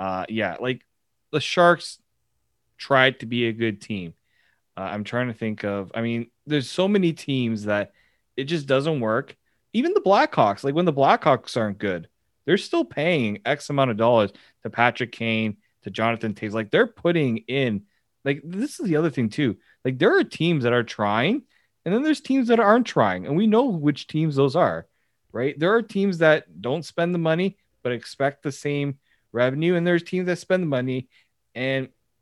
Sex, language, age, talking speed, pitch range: male, English, 30-49, 195 wpm, 115-150 Hz